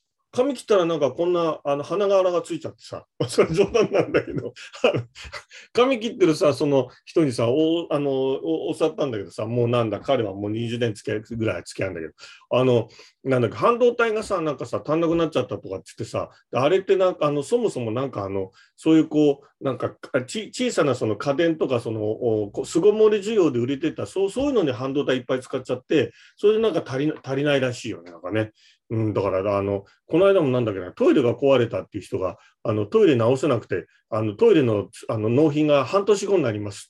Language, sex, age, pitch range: Japanese, male, 40-59, 115-170 Hz